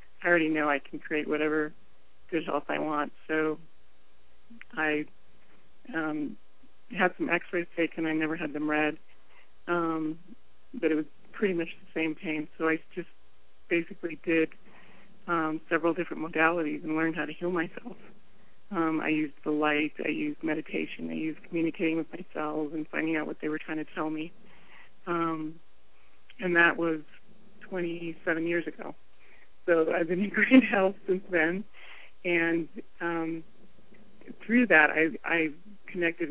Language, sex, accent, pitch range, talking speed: English, male, American, 150-170 Hz, 150 wpm